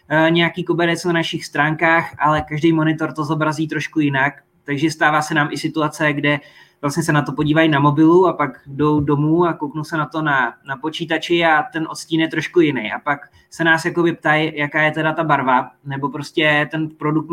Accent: native